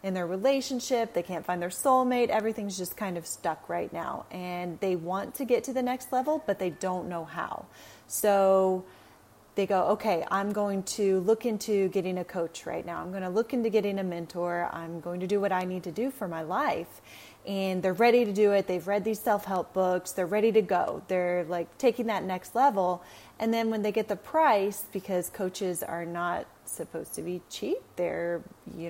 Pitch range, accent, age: 175-220 Hz, American, 30-49